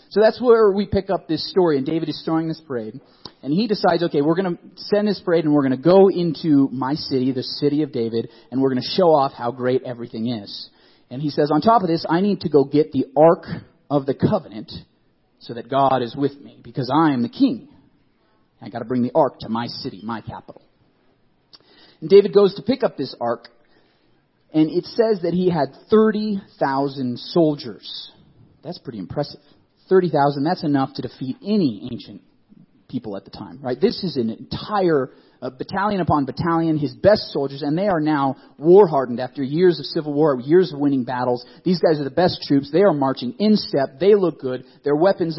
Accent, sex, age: American, male, 30-49